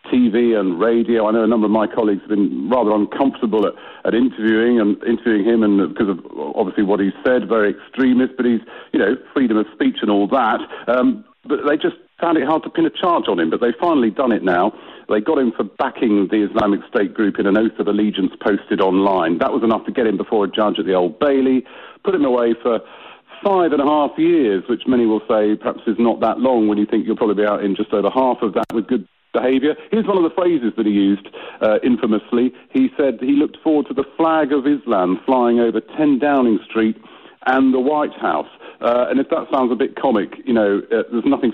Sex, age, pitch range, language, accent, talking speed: male, 50-69, 110-140 Hz, English, British, 235 wpm